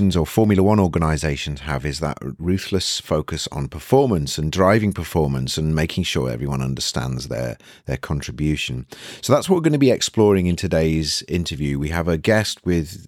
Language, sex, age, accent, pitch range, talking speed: English, male, 30-49, British, 75-95 Hz, 175 wpm